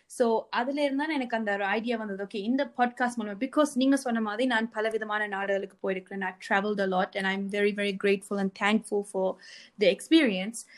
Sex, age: female, 20-39